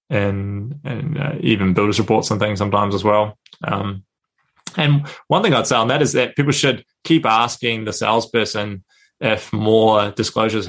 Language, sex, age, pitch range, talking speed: English, male, 20-39, 105-120 Hz, 170 wpm